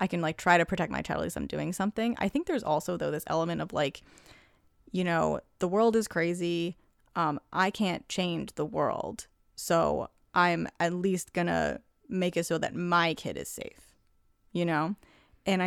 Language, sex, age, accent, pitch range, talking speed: English, female, 30-49, American, 170-195 Hz, 195 wpm